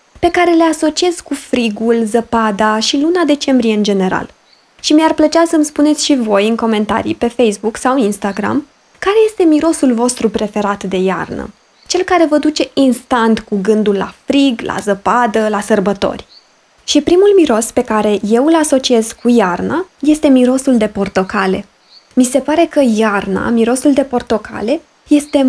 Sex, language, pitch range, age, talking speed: female, Romanian, 215-290 Hz, 20-39, 160 wpm